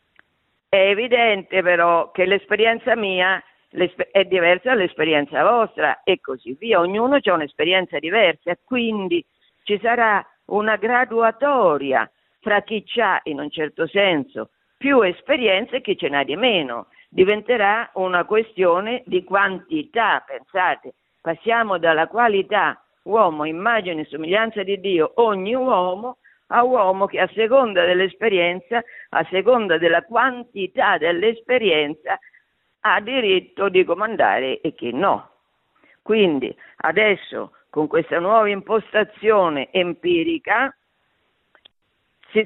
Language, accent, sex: Italian, native, female